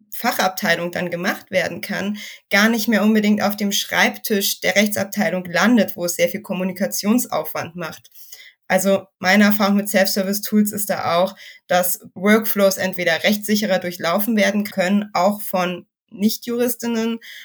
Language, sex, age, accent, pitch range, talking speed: German, female, 20-39, German, 175-205 Hz, 140 wpm